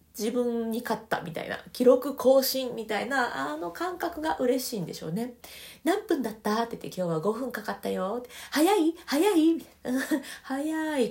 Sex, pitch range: female, 170-265 Hz